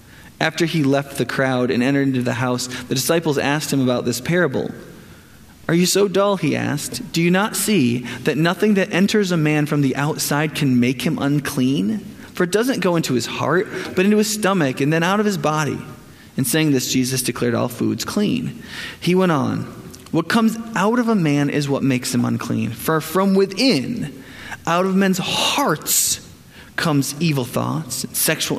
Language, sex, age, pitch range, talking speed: English, male, 20-39, 130-175 Hz, 190 wpm